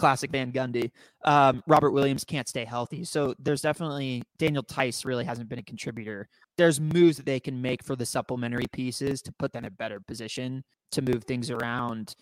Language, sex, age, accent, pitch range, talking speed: English, male, 20-39, American, 120-145 Hz, 195 wpm